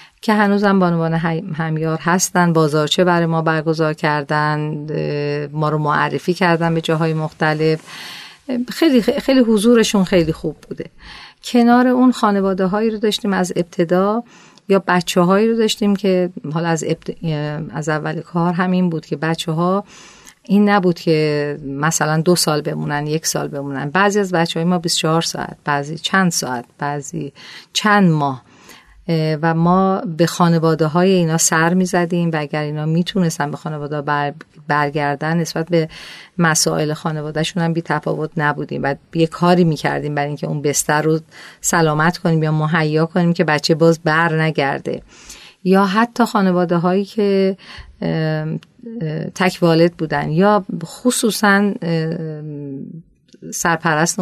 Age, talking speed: 40-59, 140 wpm